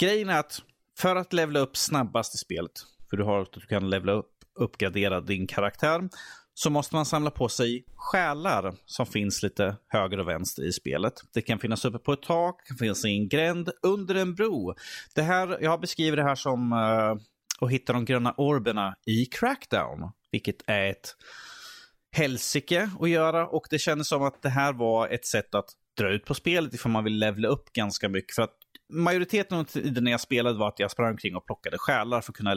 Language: Swedish